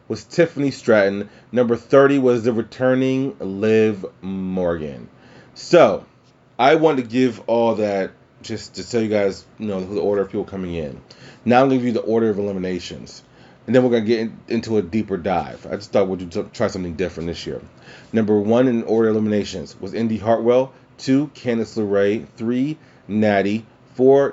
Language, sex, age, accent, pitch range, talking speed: English, male, 30-49, American, 100-125 Hz, 180 wpm